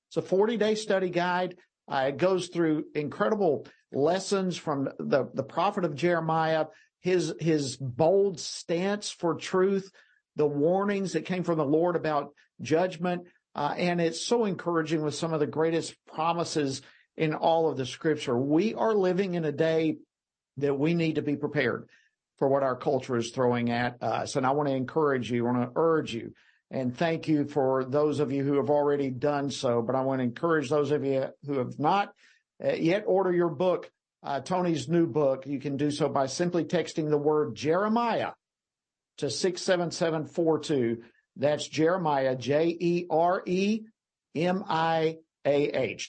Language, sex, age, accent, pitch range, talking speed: English, male, 50-69, American, 140-175 Hz, 160 wpm